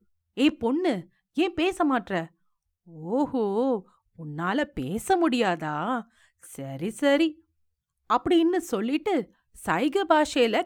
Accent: Indian